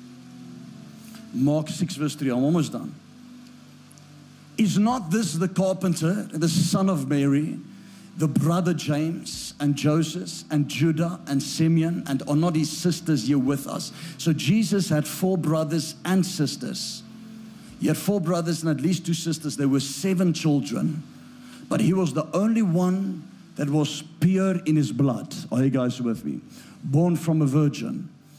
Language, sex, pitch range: English, male, 140-180 Hz